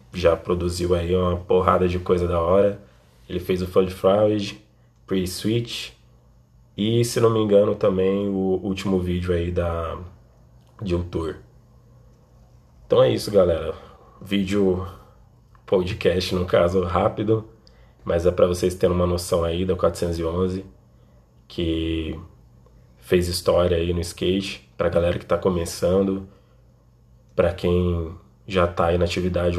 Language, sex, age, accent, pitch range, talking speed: Portuguese, male, 20-39, Brazilian, 85-95 Hz, 135 wpm